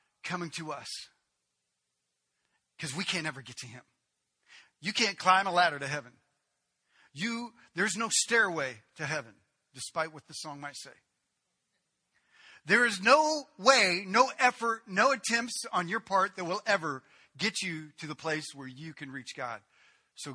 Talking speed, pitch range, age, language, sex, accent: 160 wpm, 155-255 Hz, 40-59, English, male, American